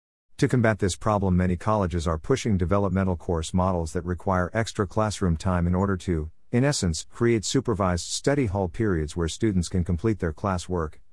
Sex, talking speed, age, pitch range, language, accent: male, 175 wpm, 50-69, 90-110 Hz, English, American